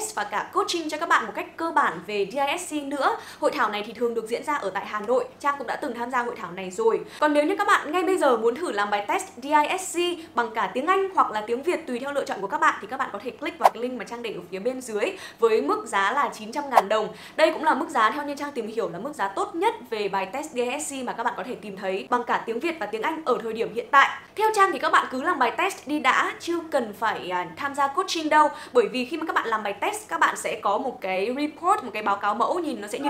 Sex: female